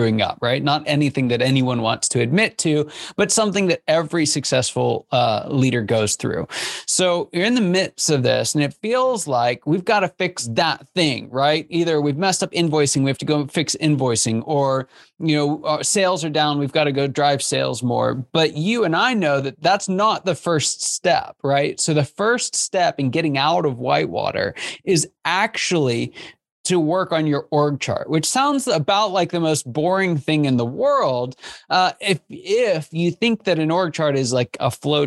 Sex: male